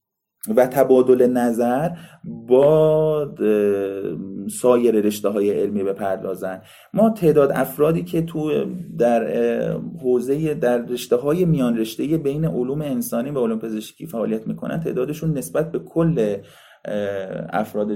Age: 30-49